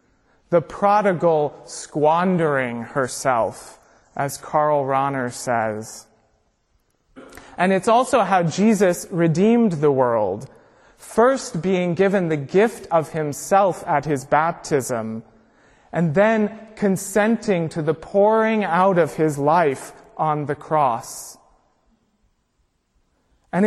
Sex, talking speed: male, 100 wpm